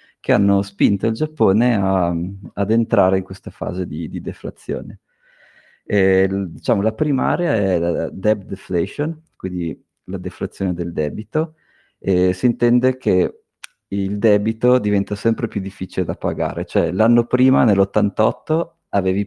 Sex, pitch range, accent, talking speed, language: male, 90-105 Hz, native, 130 wpm, Italian